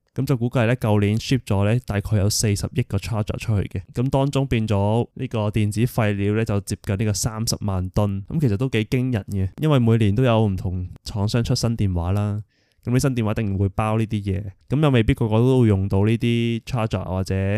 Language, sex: Chinese, male